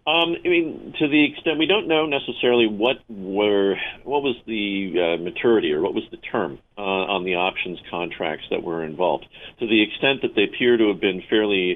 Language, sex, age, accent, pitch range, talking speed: English, male, 50-69, American, 95-125 Hz, 205 wpm